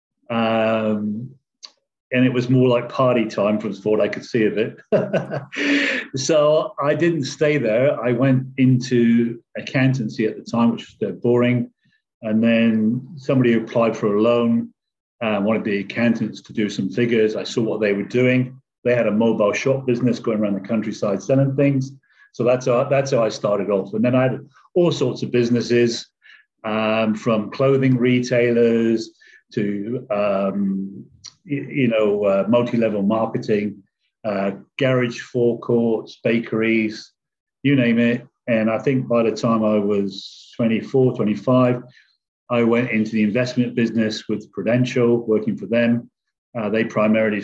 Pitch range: 110-125 Hz